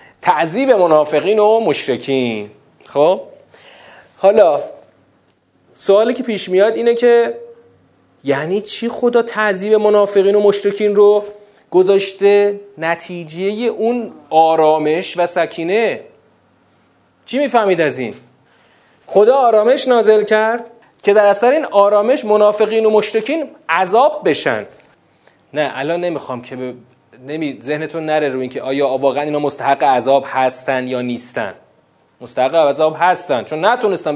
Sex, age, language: male, 30-49, Persian